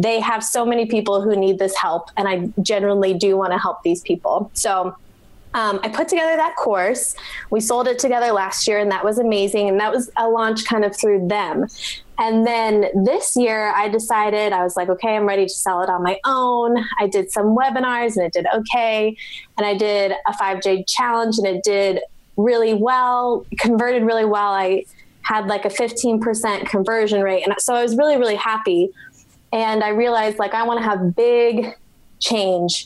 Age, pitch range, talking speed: 20-39, 195-230 Hz, 200 wpm